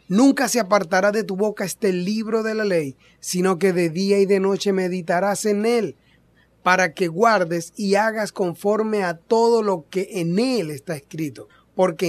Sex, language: male, Spanish